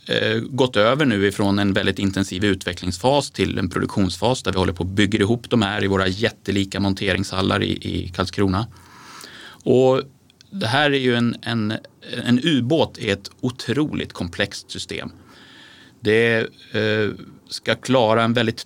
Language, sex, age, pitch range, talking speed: Swedish, male, 30-49, 100-125 Hz, 145 wpm